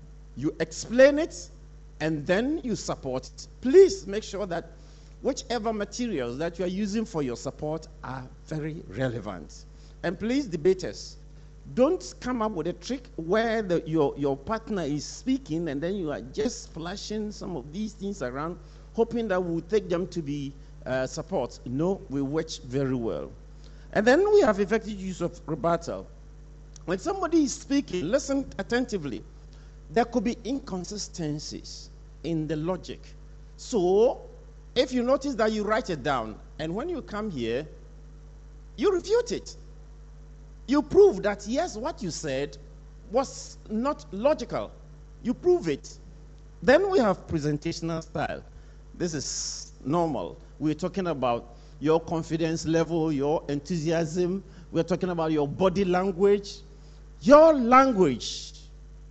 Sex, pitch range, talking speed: male, 150-220 Hz, 140 wpm